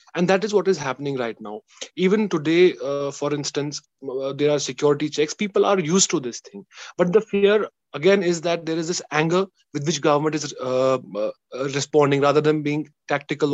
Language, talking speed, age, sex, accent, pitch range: English, 200 wpm, 30-49, male, Indian, 145-195 Hz